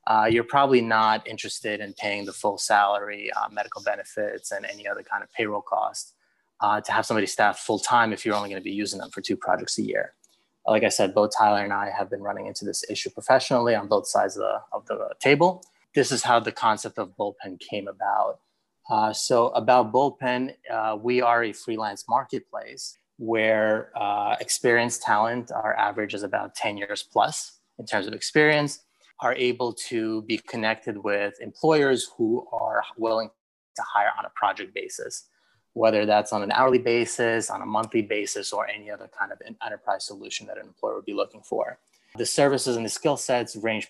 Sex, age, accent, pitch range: male, 30-49, American, 105-125 Hz